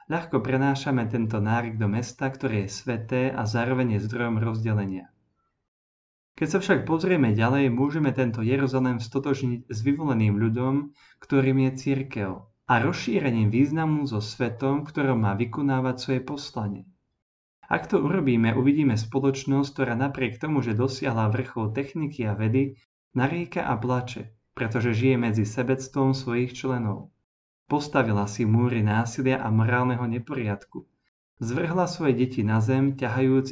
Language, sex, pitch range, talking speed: Slovak, male, 110-135 Hz, 135 wpm